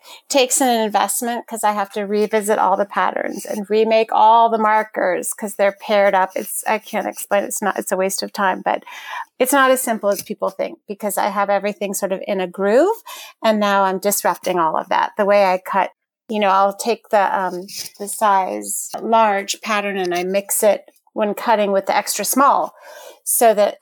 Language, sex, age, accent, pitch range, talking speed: English, female, 40-59, American, 200-250 Hz, 205 wpm